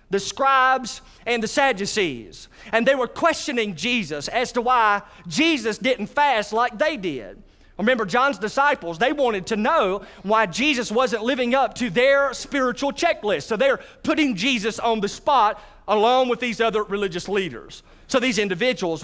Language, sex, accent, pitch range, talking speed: English, male, American, 205-260 Hz, 160 wpm